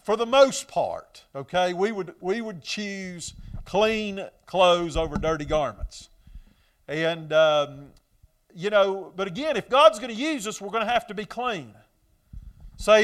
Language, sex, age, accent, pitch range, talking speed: English, male, 40-59, American, 165-245 Hz, 160 wpm